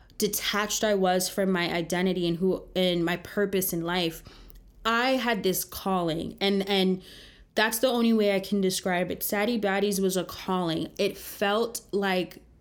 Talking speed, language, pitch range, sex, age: 165 wpm, English, 185-215 Hz, female, 20-39